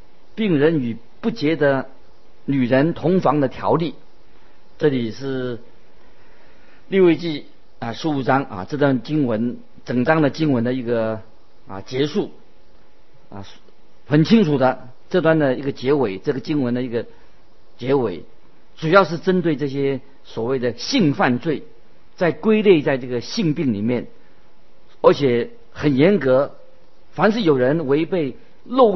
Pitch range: 120-160 Hz